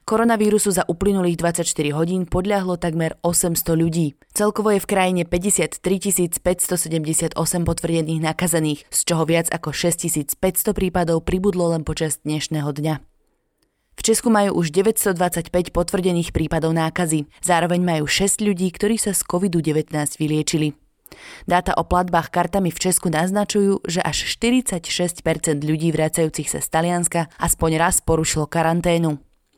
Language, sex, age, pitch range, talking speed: Slovak, female, 20-39, 160-185 Hz, 130 wpm